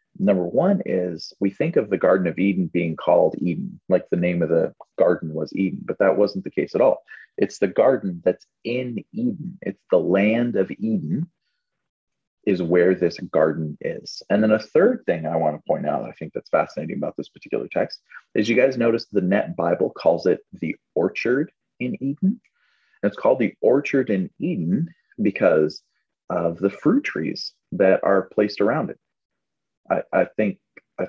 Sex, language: male, English